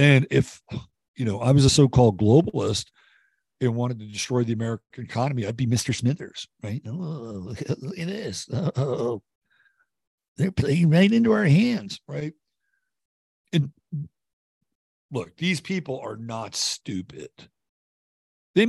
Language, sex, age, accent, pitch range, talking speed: English, male, 60-79, American, 110-145 Hz, 130 wpm